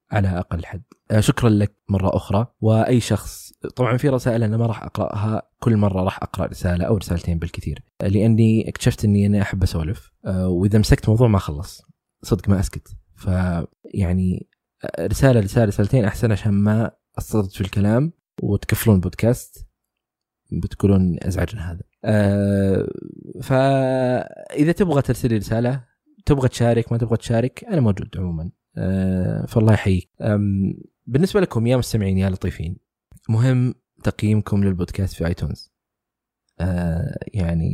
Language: Arabic